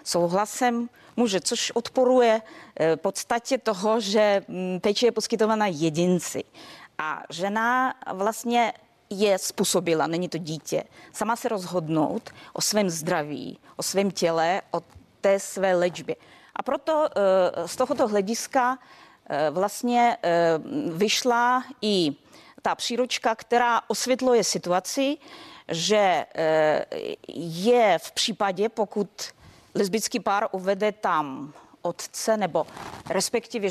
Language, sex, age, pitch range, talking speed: Czech, female, 30-49, 185-230 Hz, 100 wpm